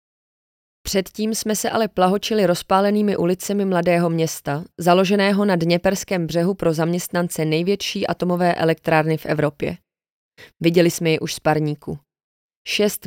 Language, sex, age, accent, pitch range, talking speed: Czech, female, 20-39, native, 160-195 Hz, 125 wpm